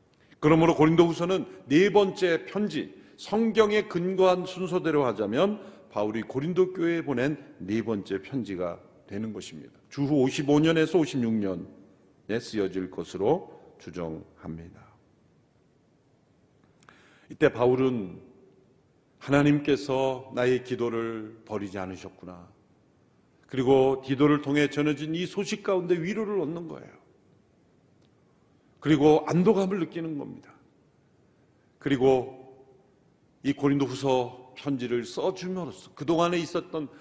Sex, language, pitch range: male, Korean, 120-180 Hz